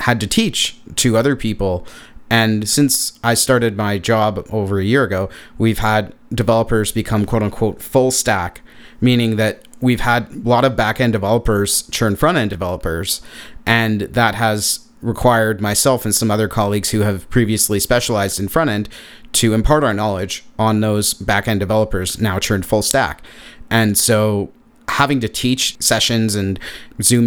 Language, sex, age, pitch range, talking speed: English, male, 30-49, 105-120 Hz, 155 wpm